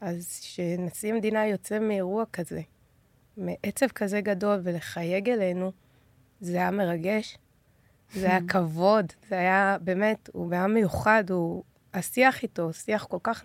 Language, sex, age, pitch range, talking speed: Hebrew, female, 20-39, 185-225 Hz, 130 wpm